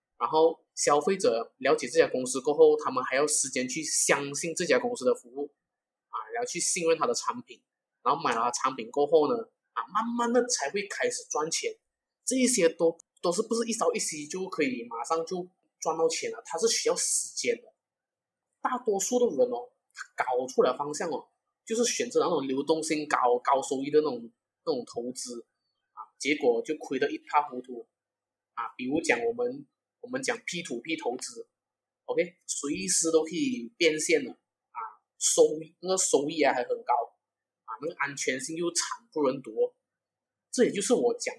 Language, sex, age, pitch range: Chinese, male, 20-39, 155-250 Hz